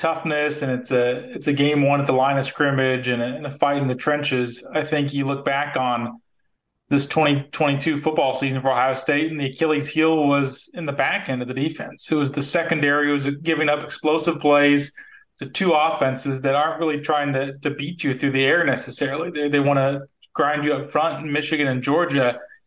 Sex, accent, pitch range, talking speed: male, American, 135-155 Hz, 210 wpm